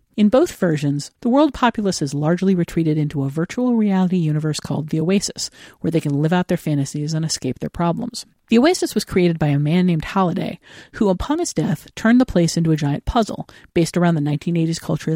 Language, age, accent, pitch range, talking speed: English, 50-69, American, 155-210 Hz, 210 wpm